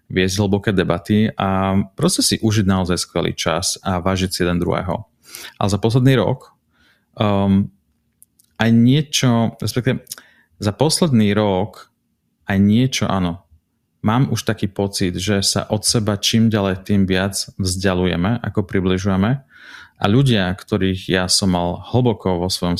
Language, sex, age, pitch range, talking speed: Slovak, male, 30-49, 95-110 Hz, 140 wpm